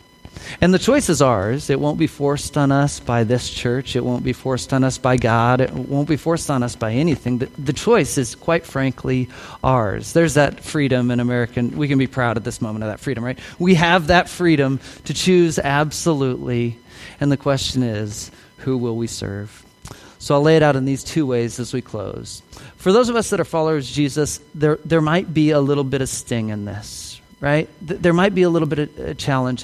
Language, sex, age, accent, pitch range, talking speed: English, male, 40-59, American, 120-155 Hz, 225 wpm